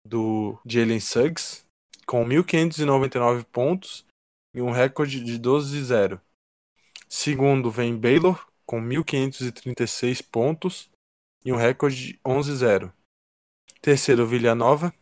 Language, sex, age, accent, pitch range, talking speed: Portuguese, male, 20-39, Brazilian, 115-140 Hz, 90 wpm